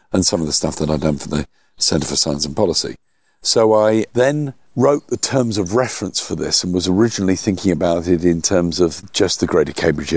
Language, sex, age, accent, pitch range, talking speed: English, male, 50-69, British, 85-105 Hz, 225 wpm